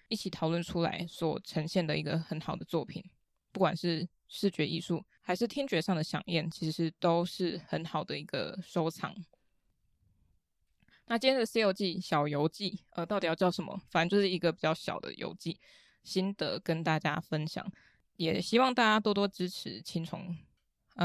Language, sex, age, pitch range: Chinese, female, 20-39, 165-195 Hz